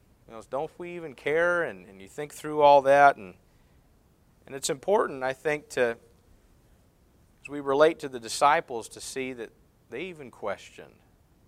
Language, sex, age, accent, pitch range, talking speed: English, male, 40-59, American, 100-130 Hz, 165 wpm